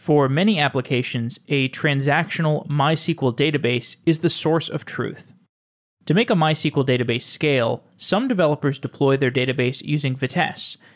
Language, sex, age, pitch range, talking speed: English, male, 30-49, 130-160 Hz, 135 wpm